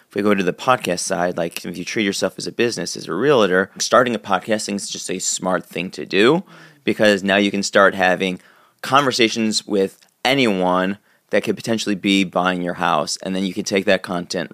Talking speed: 205 wpm